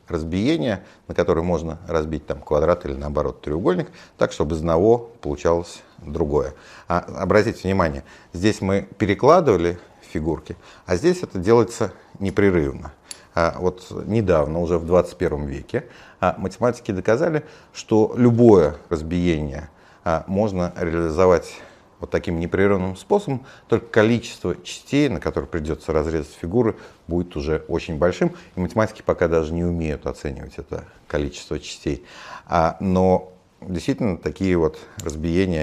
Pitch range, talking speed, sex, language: 80-105 Hz, 125 wpm, male, Russian